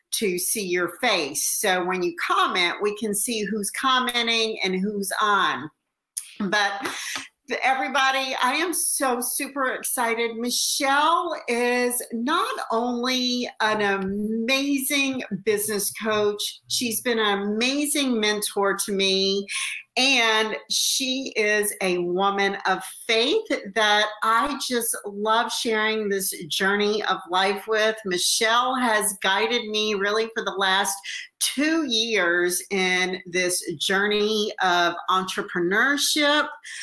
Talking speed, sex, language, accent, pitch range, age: 115 wpm, female, English, American, 200-245 Hz, 50-69